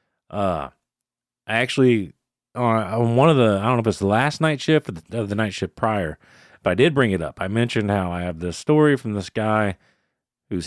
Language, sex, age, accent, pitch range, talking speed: English, male, 30-49, American, 95-120 Hz, 225 wpm